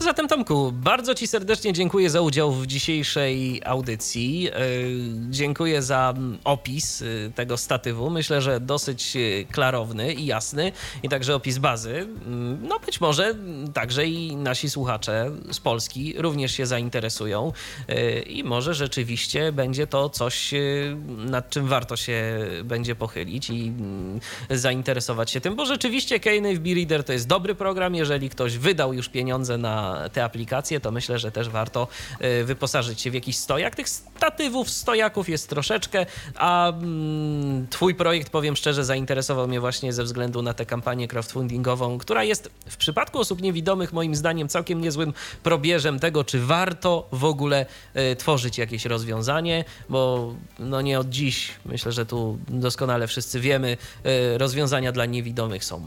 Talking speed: 145 wpm